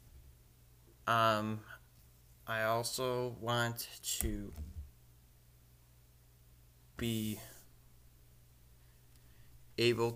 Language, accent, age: English, American, 20-39